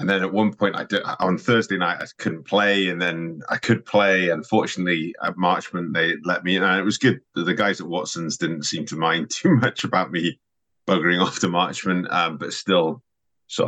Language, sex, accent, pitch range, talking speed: English, male, British, 85-100 Hz, 215 wpm